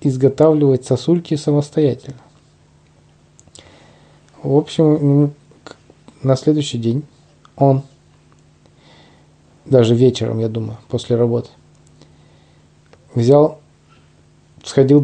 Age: 20-39